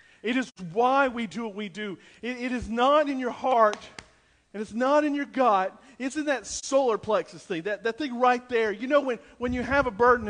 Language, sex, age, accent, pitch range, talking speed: English, male, 40-59, American, 195-250 Hz, 235 wpm